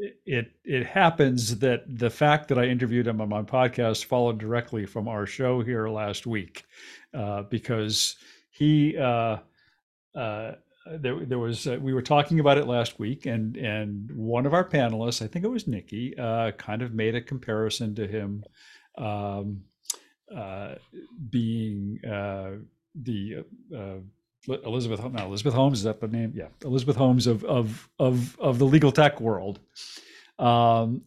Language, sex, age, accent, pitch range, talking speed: English, male, 50-69, American, 105-130 Hz, 160 wpm